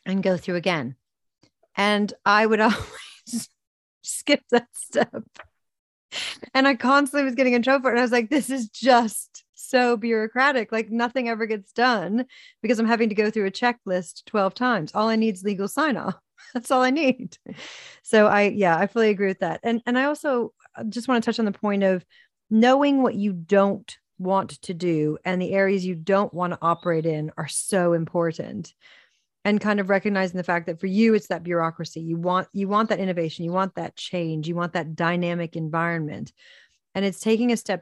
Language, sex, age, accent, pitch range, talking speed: English, female, 40-59, American, 175-225 Hz, 200 wpm